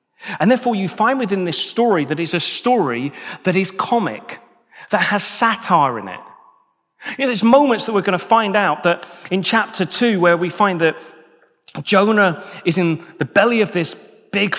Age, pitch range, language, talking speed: 40-59, 175-230 Hz, English, 185 wpm